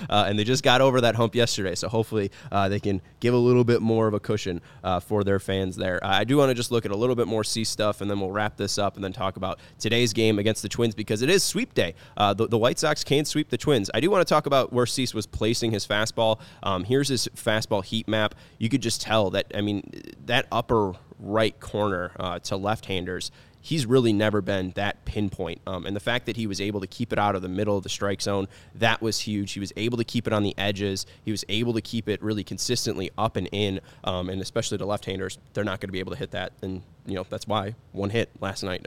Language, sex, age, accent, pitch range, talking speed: English, male, 20-39, American, 100-115 Hz, 260 wpm